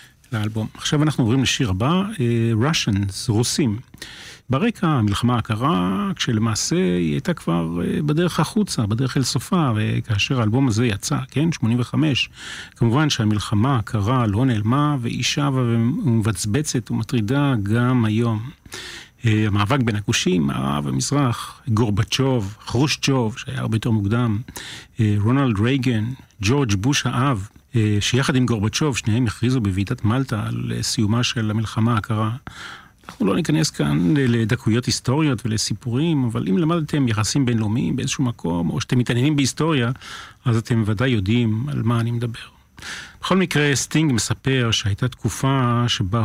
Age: 40-59